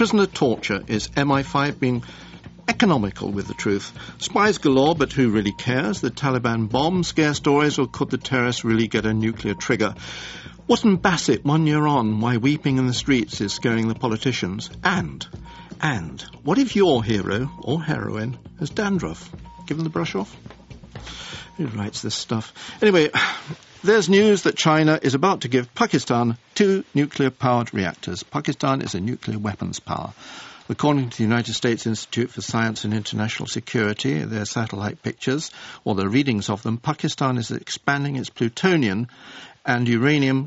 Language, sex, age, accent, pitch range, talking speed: English, male, 50-69, British, 115-150 Hz, 160 wpm